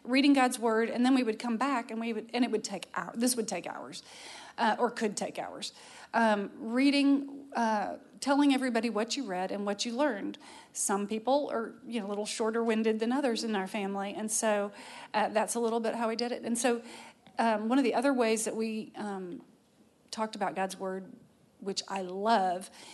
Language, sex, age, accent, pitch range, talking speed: English, female, 40-59, American, 210-250 Hz, 210 wpm